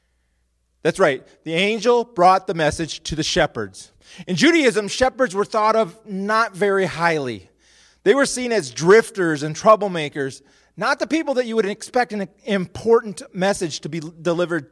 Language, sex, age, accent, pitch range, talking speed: English, male, 30-49, American, 145-220 Hz, 160 wpm